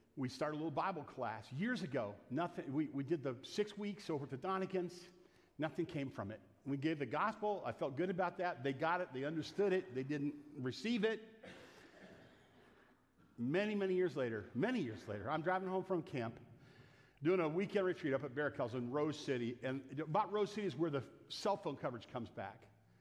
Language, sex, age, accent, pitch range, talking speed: English, male, 50-69, American, 120-160 Hz, 200 wpm